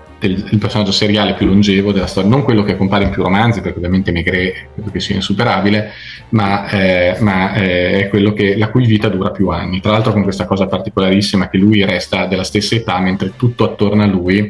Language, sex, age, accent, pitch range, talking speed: Italian, male, 30-49, native, 95-105 Hz, 210 wpm